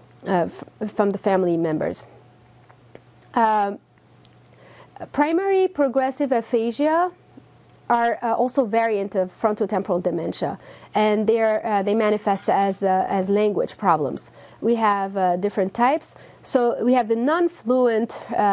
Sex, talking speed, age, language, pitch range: female, 125 wpm, 30-49, English, 200-250 Hz